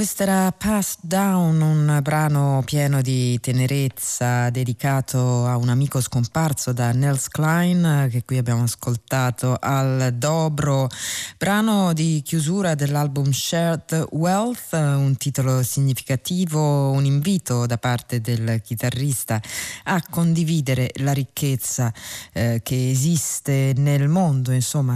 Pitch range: 125-160 Hz